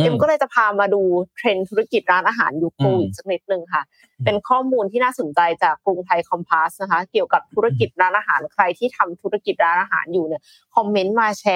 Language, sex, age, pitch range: Thai, female, 20-39, 175-245 Hz